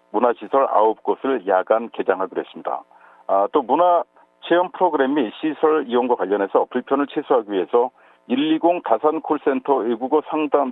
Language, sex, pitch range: Korean, male, 120-160 Hz